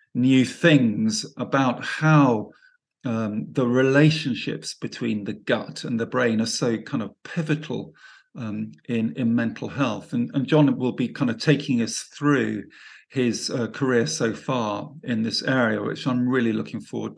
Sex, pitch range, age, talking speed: male, 115-155 Hz, 50-69, 160 wpm